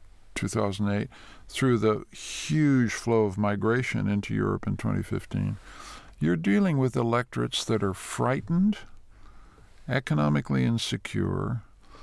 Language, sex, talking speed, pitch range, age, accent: English, male, 100 wpm, 105-125 Hz, 50-69, American